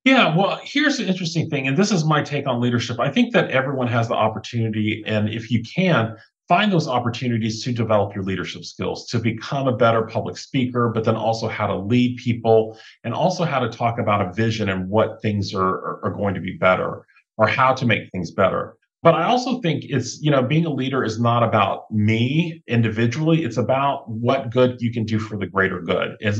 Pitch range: 105-135 Hz